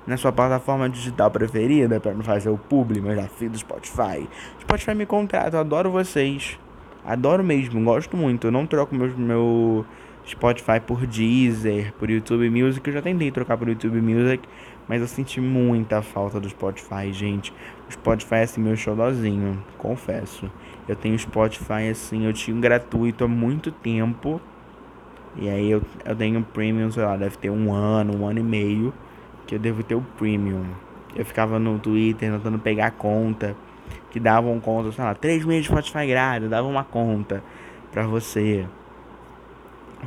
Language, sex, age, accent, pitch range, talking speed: Portuguese, male, 20-39, Brazilian, 110-130 Hz, 170 wpm